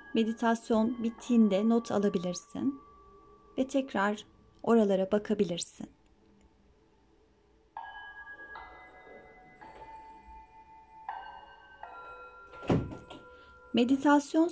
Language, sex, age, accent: Turkish, female, 30-49, native